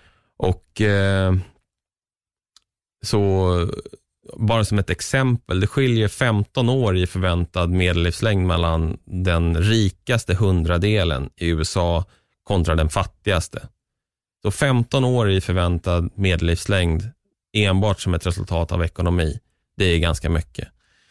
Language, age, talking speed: Swedish, 20-39, 110 wpm